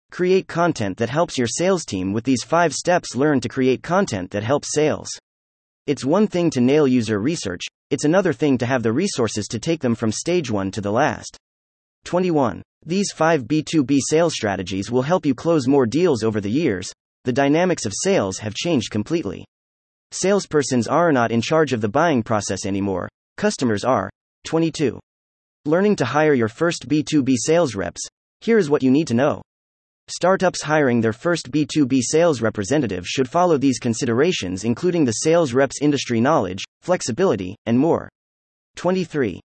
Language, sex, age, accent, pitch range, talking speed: English, male, 30-49, American, 105-160 Hz, 170 wpm